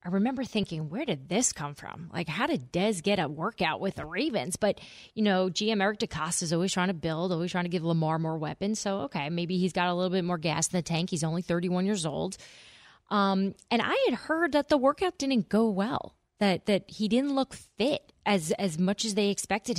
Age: 20-39